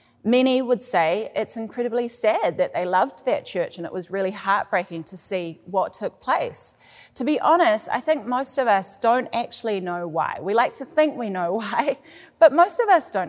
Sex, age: female, 30-49